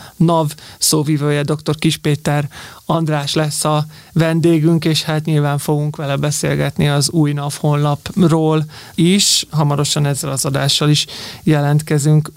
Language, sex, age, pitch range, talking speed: Hungarian, male, 30-49, 150-165 Hz, 120 wpm